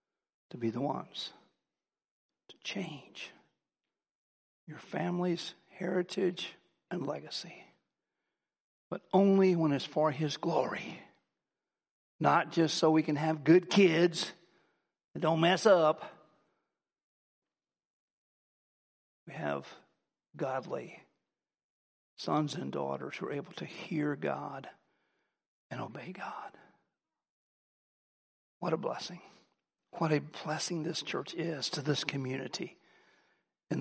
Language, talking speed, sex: English, 105 wpm, male